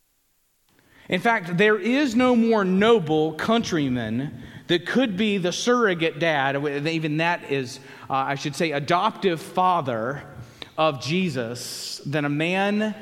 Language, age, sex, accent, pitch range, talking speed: English, 30-49, male, American, 145-205 Hz, 130 wpm